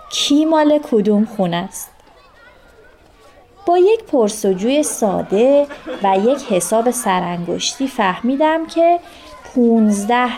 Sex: female